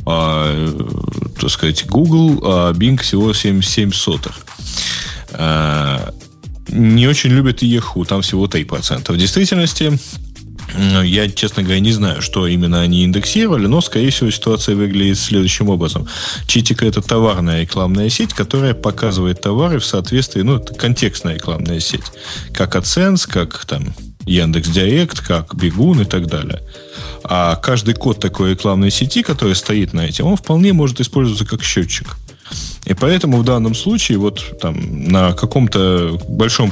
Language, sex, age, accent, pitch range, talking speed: Russian, male, 20-39, native, 90-120 Hz, 140 wpm